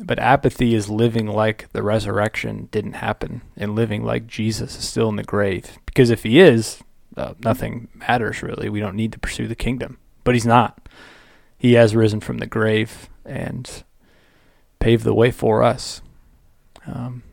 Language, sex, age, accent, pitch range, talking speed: English, male, 20-39, American, 110-120 Hz, 170 wpm